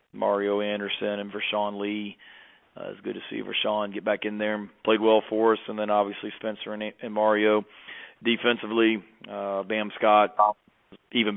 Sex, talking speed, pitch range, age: male, 175 wpm, 105-115 Hz, 40-59